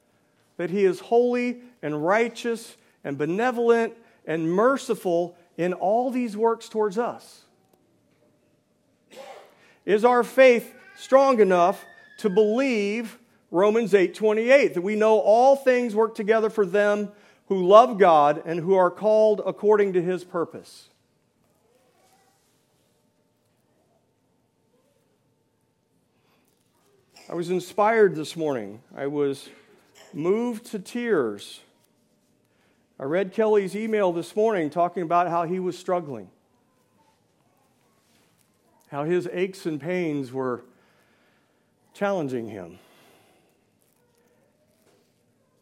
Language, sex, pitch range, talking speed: English, male, 160-220 Hz, 100 wpm